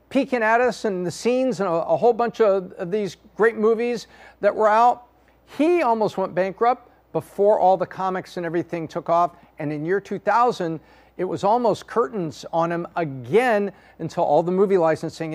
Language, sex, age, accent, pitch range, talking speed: English, male, 50-69, American, 175-245 Hz, 185 wpm